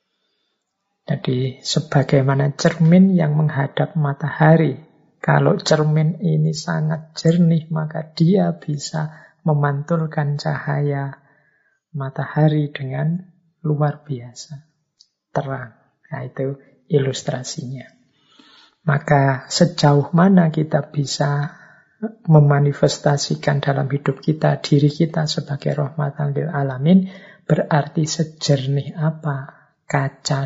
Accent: native